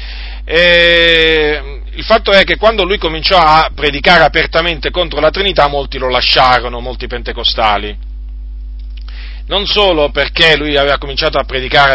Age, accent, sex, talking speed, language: 40-59, native, male, 135 wpm, Italian